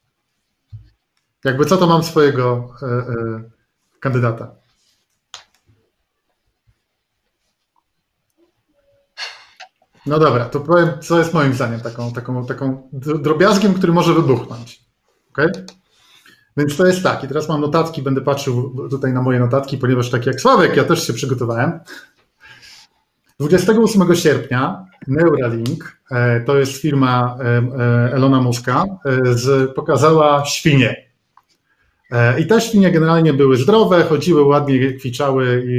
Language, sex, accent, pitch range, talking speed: Polish, male, native, 125-160 Hz, 100 wpm